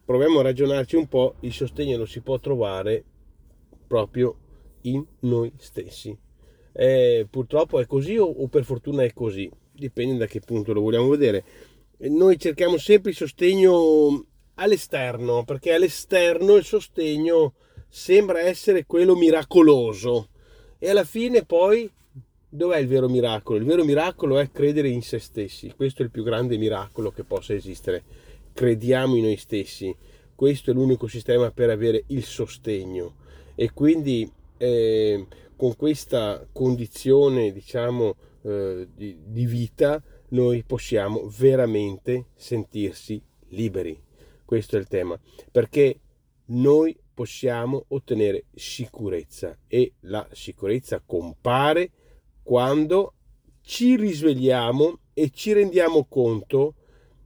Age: 30-49